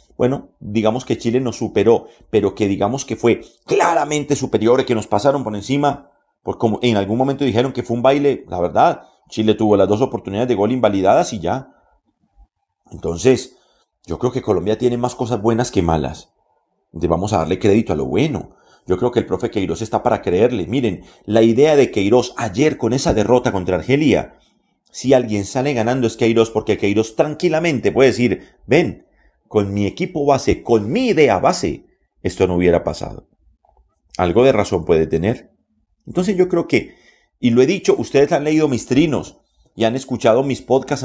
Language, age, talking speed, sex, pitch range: Spanish, 40-59, 185 wpm, male, 105-135 Hz